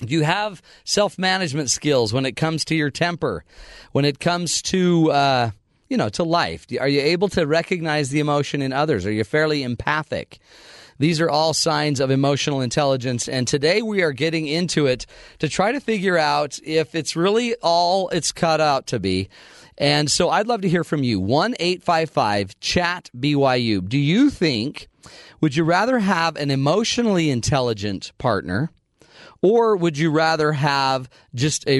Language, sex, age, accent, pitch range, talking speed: English, male, 40-59, American, 130-165 Hz, 170 wpm